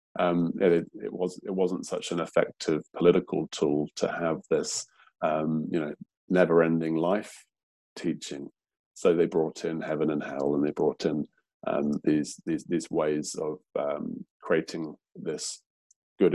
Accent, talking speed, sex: British, 155 wpm, male